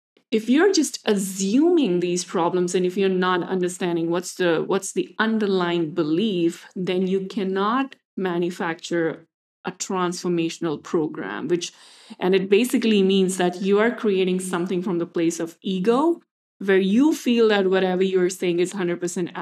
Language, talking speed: English, 150 wpm